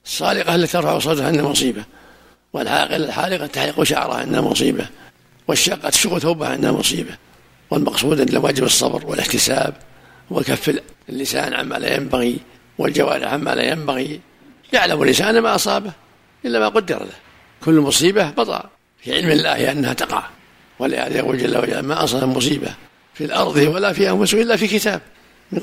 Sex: male